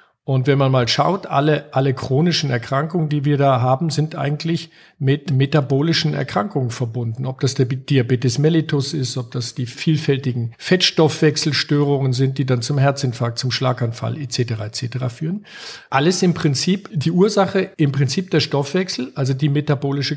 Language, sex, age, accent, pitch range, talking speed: German, male, 50-69, German, 130-155 Hz, 155 wpm